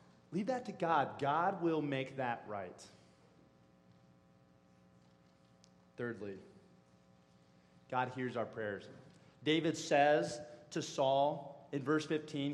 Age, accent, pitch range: 30-49, American, 110-170 Hz